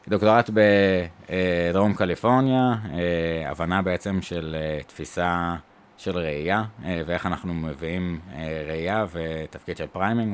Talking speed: 95 wpm